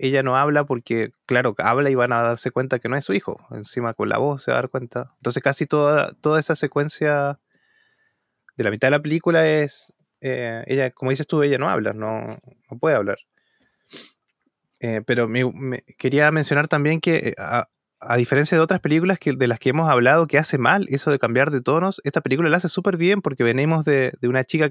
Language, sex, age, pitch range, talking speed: Spanish, male, 20-39, 130-165 Hz, 210 wpm